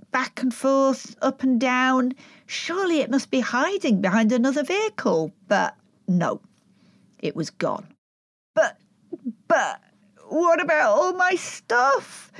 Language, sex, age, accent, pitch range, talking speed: English, female, 40-59, British, 200-280 Hz, 125 wpm